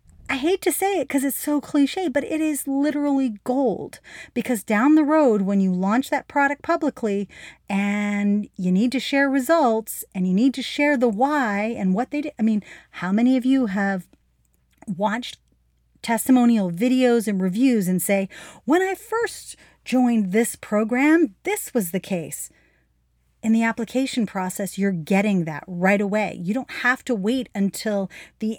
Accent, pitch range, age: American, 185-255 Hz, 40-59